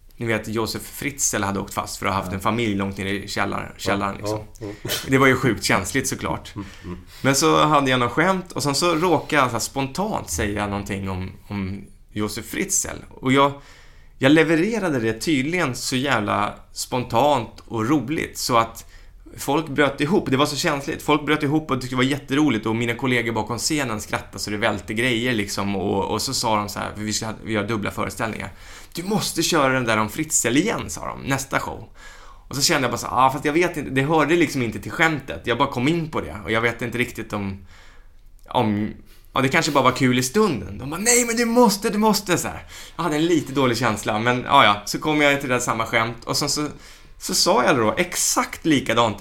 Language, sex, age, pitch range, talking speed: Swedish, male, 20-39, 105-140 Hz, 225 wpm